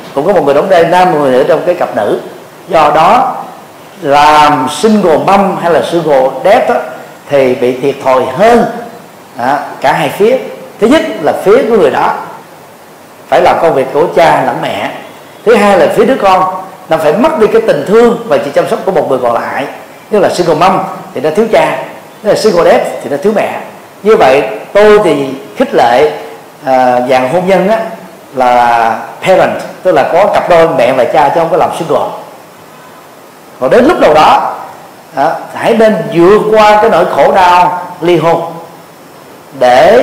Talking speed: 190 wpm